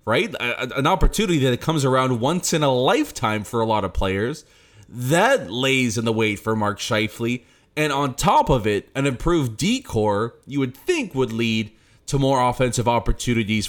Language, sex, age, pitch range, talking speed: English, male, 30-49, 110-135 Hz, 175 wpm